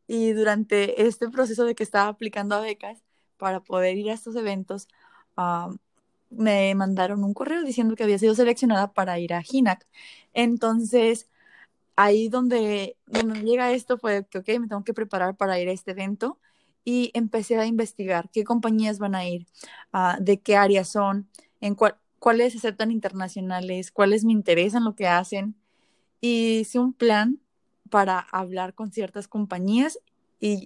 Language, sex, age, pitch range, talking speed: English, female, 20-39, 190-230 Hz, 160 wpm